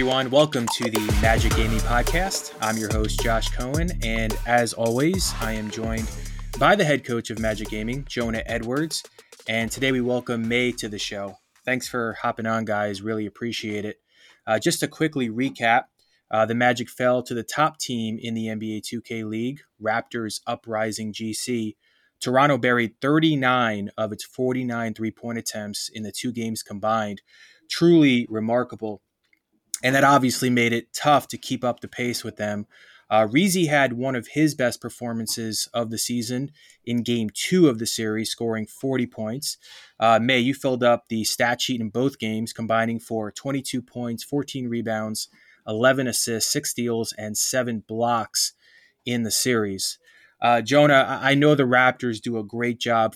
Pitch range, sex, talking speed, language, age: 110-130 Hz, male, 170 wpm, English, 20-39